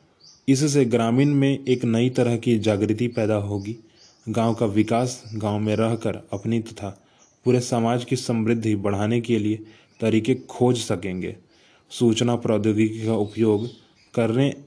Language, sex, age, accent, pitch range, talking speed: Hindi, male, 20-39, native, 105-120 Hz, 135 wpm